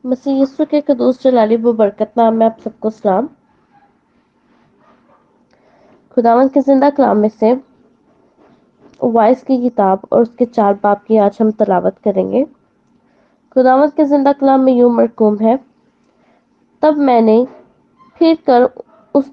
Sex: female